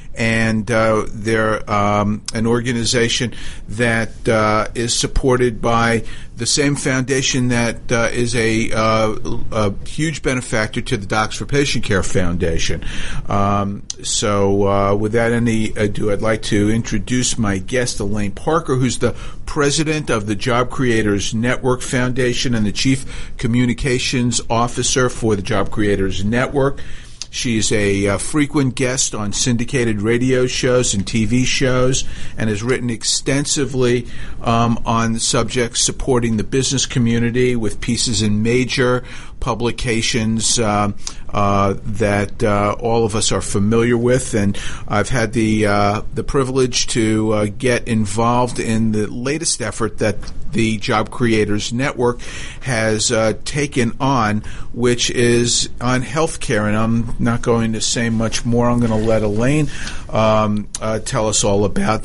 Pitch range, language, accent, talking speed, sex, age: 110-125 Hz, English, American, 145 wpm, male, 50-69